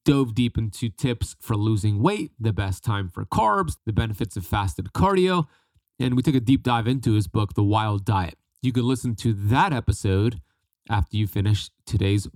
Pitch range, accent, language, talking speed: 100-135 Hz, American, English, 190 wpm